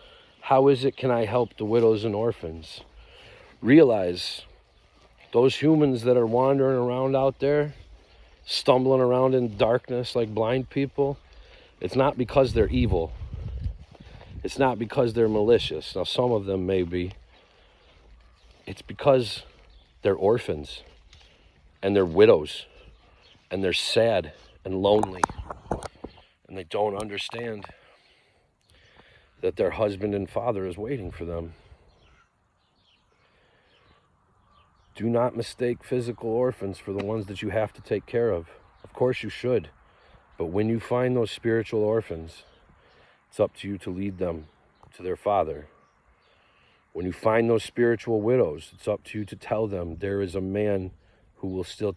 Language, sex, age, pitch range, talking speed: English, male, 50-69, 90-120 Hz, 140 wpm